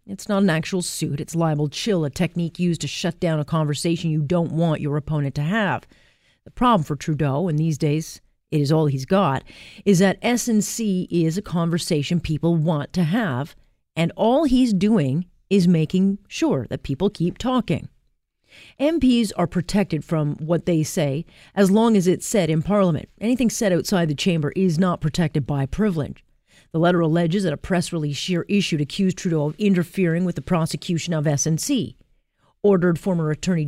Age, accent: 40-59, American